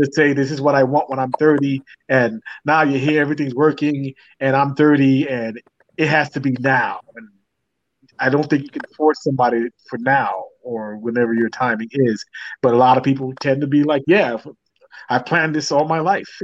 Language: English